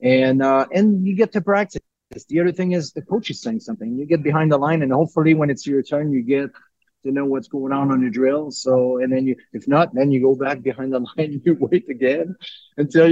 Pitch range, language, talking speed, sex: 130-165 Hz, English, 250 wpm, male